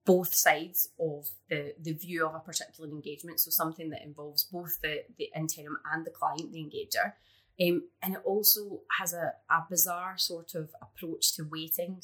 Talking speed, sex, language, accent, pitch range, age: 180 wpm, female, English, British, 155-185 Hz, 20-39